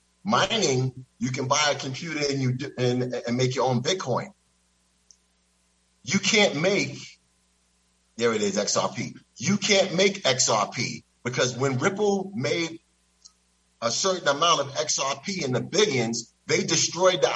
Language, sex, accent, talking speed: English, male, American, 140 wpm